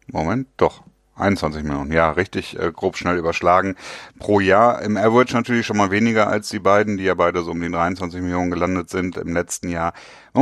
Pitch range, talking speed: 85-105 Hz, 200 wpm